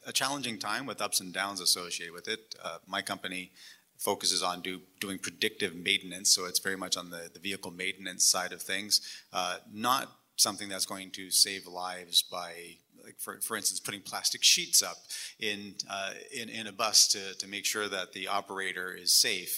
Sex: male